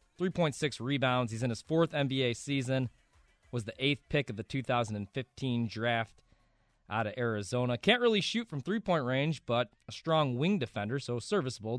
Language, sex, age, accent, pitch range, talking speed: English, male, 20-39, American, 110-140 Hz, 160 wpm